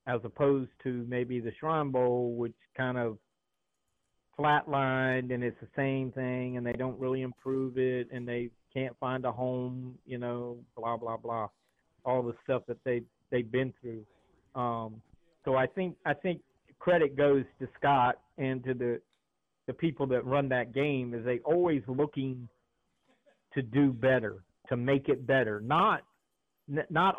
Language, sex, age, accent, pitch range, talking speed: English, male, 50-69, American, 120-140 Hz, 160 wpm